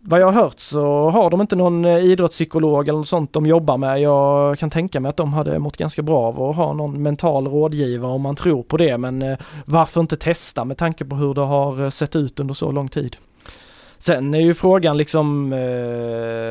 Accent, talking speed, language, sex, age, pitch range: native, 205 wpm, Swedish, male, 20-39, 140-160 Hz